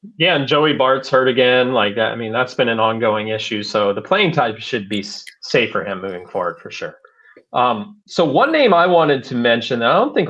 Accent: American